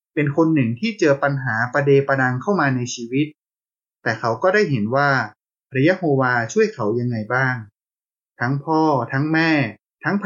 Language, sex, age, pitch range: Thai, male, 20-39, 115-150 Hz